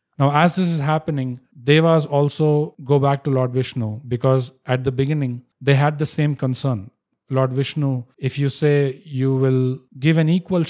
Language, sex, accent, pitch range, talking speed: English, male, Indian, 115-140 Hz, 175 wpm